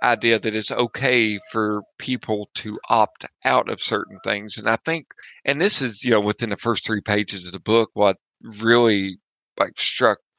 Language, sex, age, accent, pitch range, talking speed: English, male, 40-59, American, 105-120 Hz, 185 wpm